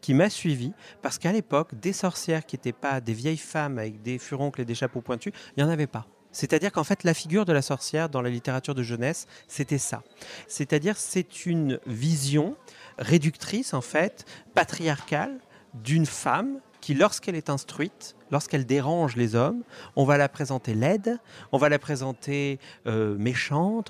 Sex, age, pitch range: male, 40-59, 130-165 Hz